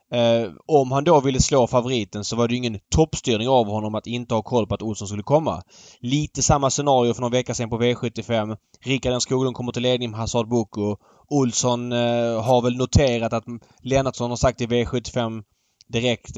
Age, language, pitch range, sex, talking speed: 20-39, Swedish, 110-130 Hz, male, 200 wpm